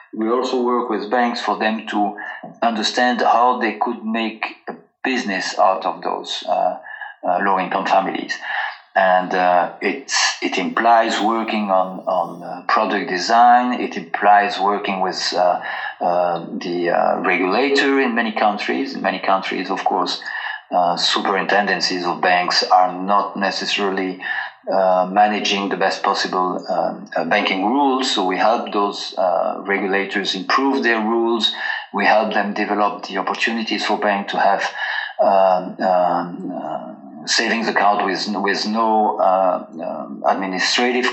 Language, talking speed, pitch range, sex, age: English, 140 wpm, 95-120 Hz, male, 40-59